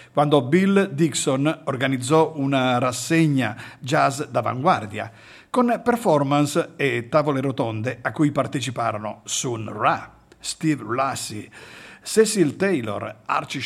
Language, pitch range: Italian, 125-175 Hz